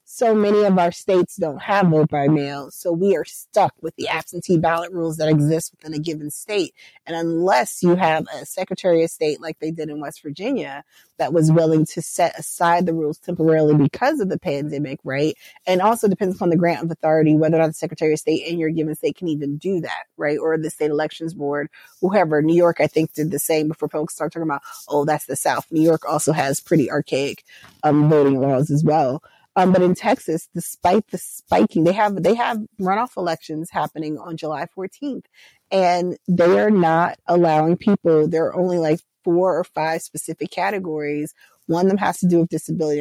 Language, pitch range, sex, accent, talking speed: English, 155-180 Hz, female, American, 210 wpm